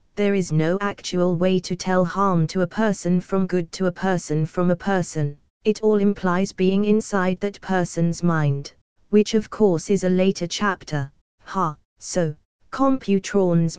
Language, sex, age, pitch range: English, female, 20-39, 160-200 Hz